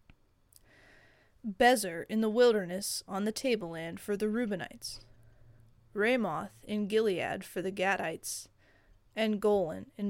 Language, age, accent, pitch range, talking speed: English, 20-39, American, 185-225 Hz, 115 wpm